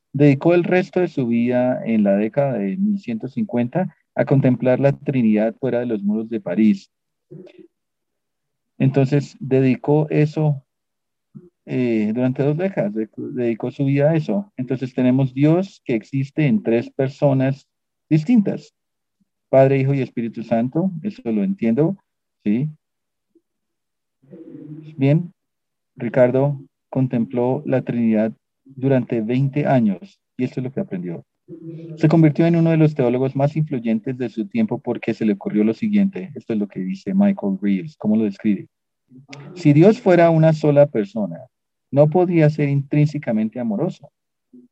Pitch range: 120-160 Hz